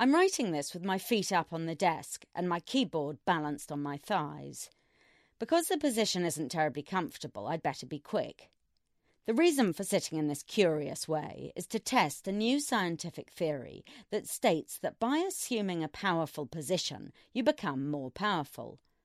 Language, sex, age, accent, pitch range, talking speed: English, female, 40-59, British, 145-215 Hz, 170 wpm